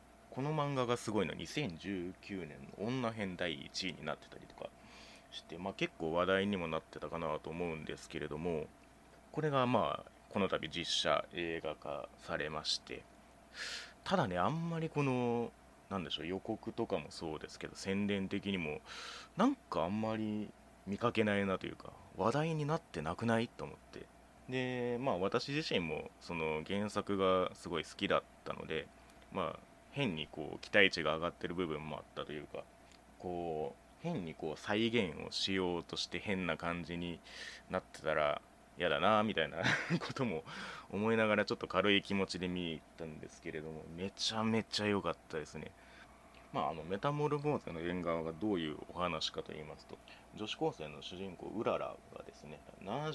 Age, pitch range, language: 30-49, 85-115 Hz, Japanese